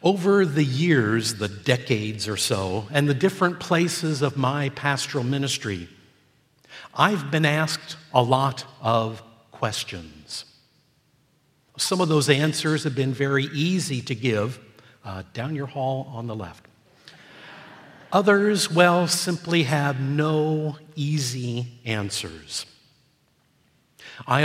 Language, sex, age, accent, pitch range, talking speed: English, male, 50-69, American, 115-155 Hz, 115 wpm